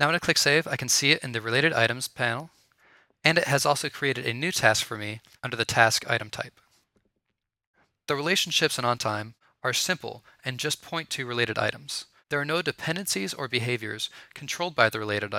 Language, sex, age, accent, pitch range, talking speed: English, male, 20-39, American, 115-145 Hz, 200 wpm